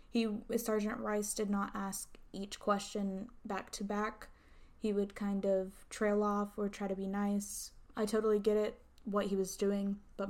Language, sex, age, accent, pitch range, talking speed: English, female, 10-29, American, 195-215 Hz, 175 wpm